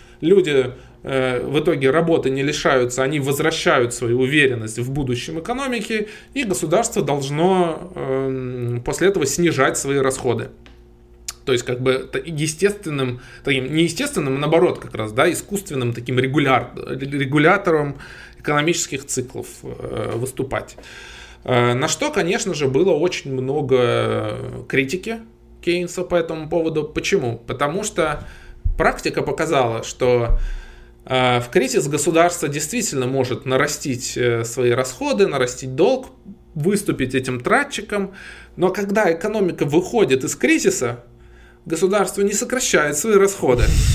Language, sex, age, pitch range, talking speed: Russian, male, 20-39, 130-175 Hz, 115 wpm